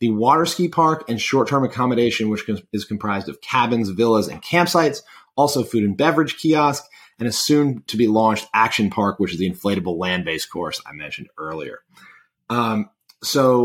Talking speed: 180 wpm